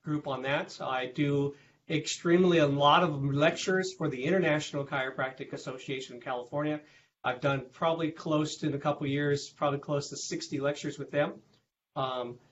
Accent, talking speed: American, 175 wpm